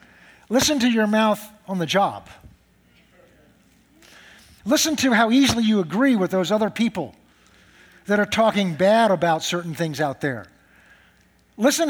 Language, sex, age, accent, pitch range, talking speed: English, male, 50-69, American, 165-230 Hz, 135 wpm